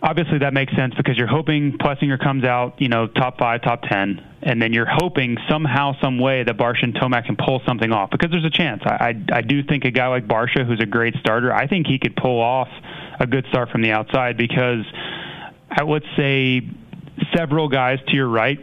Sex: male